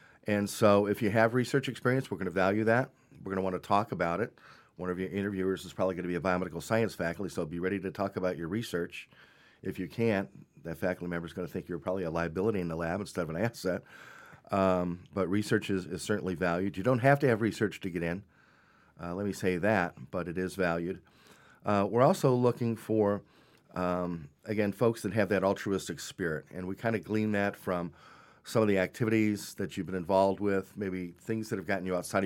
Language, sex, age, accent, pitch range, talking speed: English, male, 40-59, American, 90-105 Hz, 230 wpm